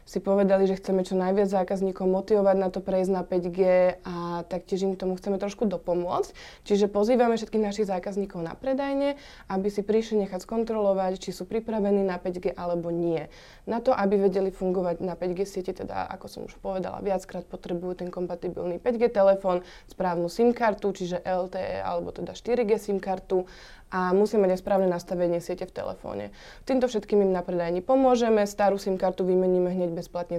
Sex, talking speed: female, 175 wpm